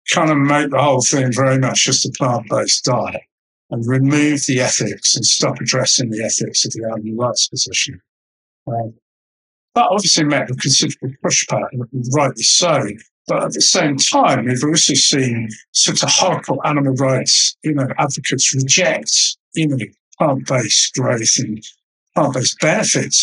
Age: 60-79